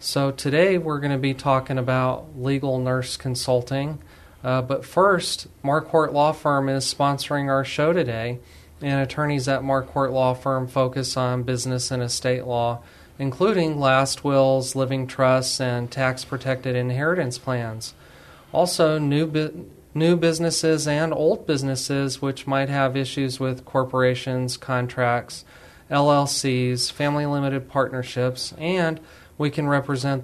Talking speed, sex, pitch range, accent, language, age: 130 wpm, male, 130-145 Hz, American, English, 30-49